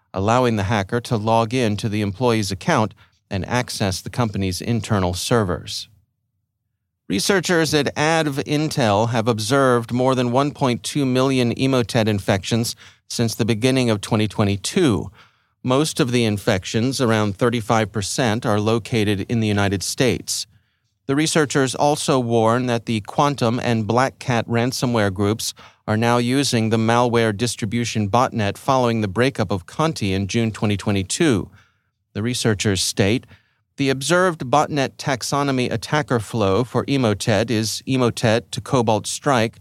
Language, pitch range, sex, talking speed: English, 105-125 Hz, male, 130 wpm